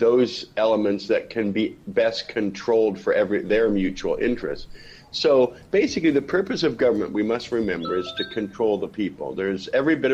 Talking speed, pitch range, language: 170 wpm, 95-125 Hz, English